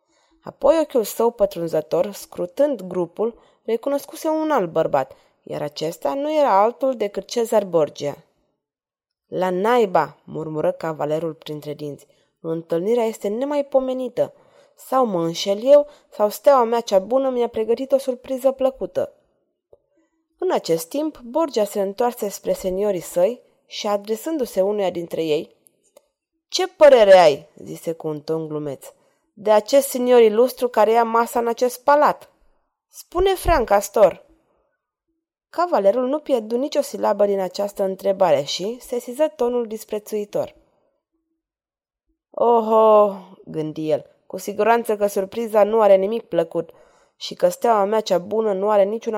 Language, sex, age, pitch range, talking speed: Romanian, female, 20-39, 185-270 Hz, 130 wpm